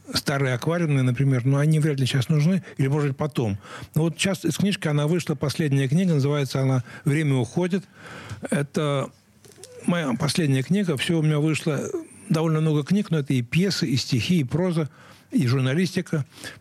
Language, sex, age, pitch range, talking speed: Russian, male, 60-79, 120-155 Hz, 165 wpm